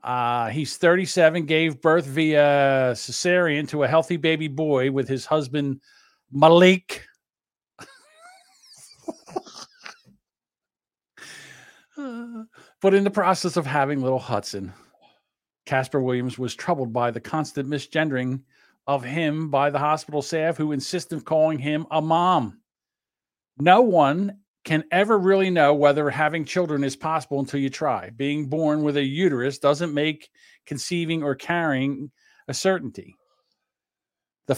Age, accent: 50-69, American